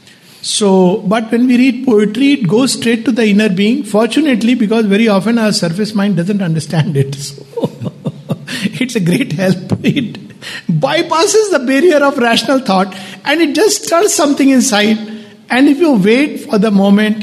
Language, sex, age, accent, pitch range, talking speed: English, male, 60-79, Indian, 175-240 Hz, 165 wpm